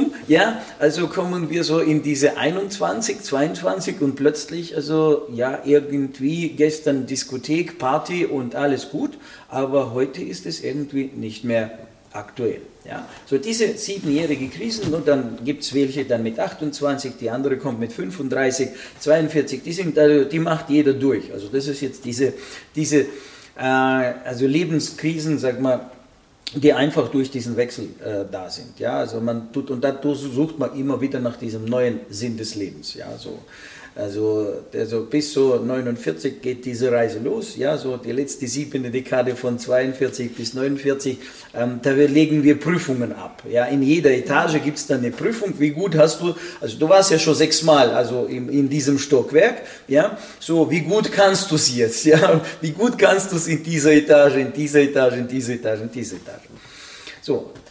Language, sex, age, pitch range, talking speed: German, male, 50-69, 125-155 Hz, 175 wpm